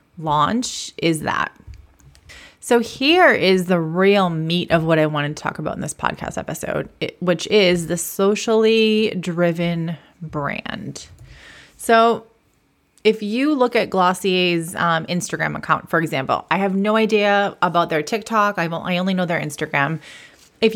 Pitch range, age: 170-220 Hz, 30-49